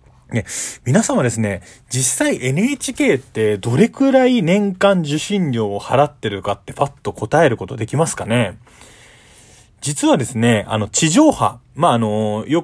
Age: 20-39